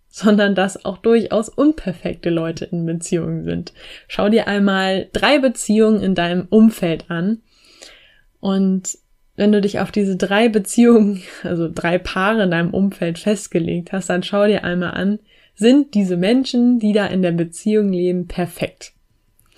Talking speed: 150 wpm